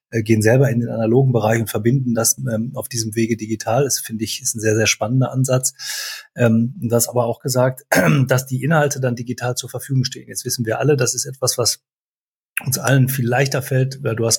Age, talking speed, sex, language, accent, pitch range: 30-49, 215 wpm, male, German, German, 115-130 Hz